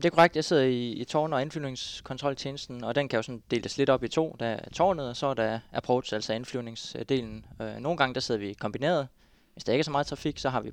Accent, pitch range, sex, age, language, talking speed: native, 110-130 Hz, male, 20-39, Danish, 255 wpm